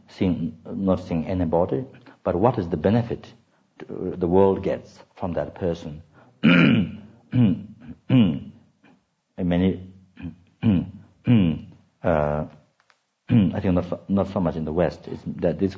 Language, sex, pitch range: English, male, 75-90 Hz